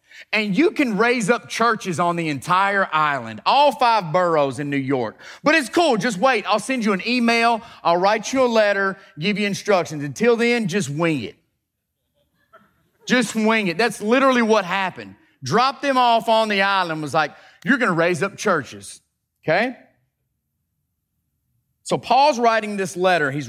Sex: male